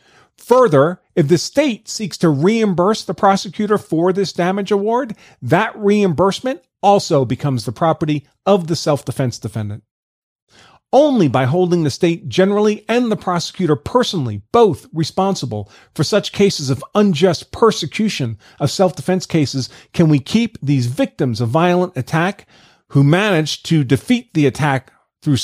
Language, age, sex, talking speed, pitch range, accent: English, 40-59, male, 140 wpm, 145-190 Hz, American